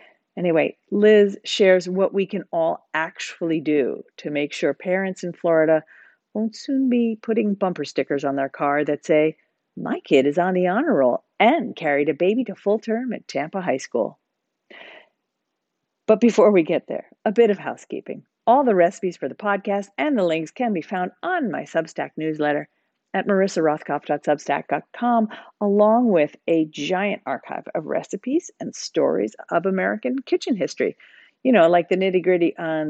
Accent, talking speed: American, 165 wpm